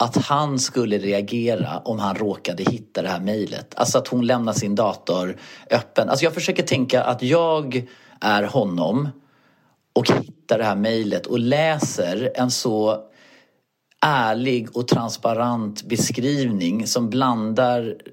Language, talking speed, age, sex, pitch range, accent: Swedish, 135 wpm, 40-59, male, 105-130 Hz, native